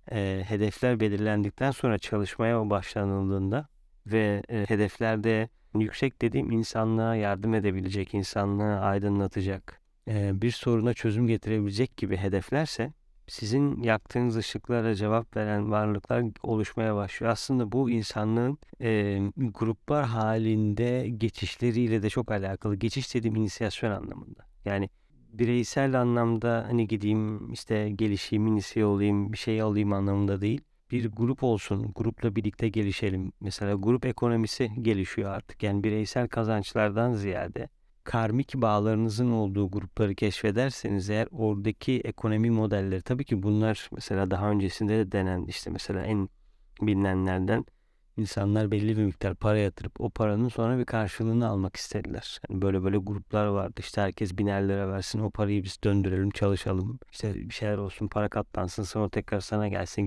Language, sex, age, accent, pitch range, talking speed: Turkish, male, 30-49, native, 100-115 Hz, 130 wpm